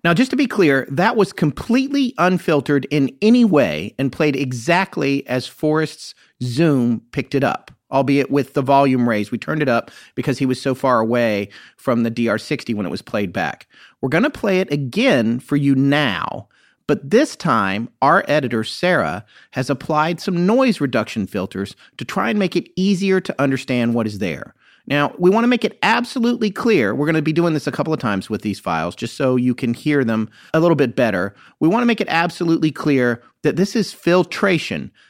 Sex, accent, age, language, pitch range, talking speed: male, American, 40-59, English, 125-180 Hz, 200 wpm